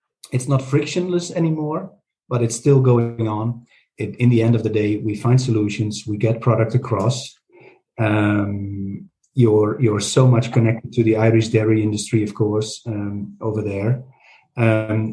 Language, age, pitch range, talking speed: English, 40-59, 110-135 Hz, 160 wpm